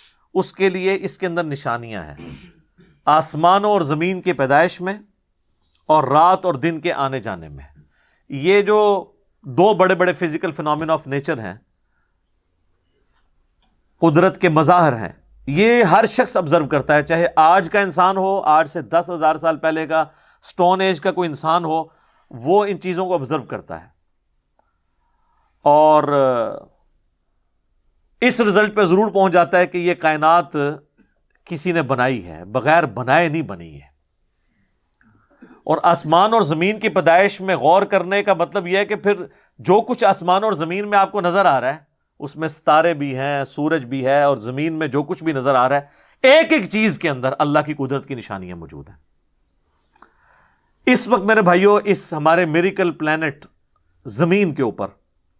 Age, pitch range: 50-69, 135-185 Hz